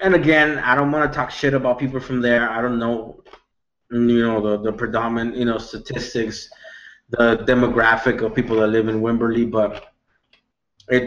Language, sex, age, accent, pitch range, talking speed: English, male, 20-39, American, 115-140 Hz, 180 wpm